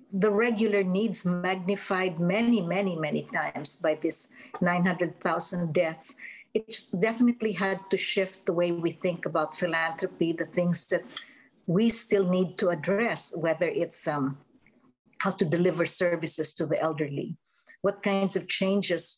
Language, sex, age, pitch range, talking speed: English, female, 50-69, 175-200 Hz, 140 wpm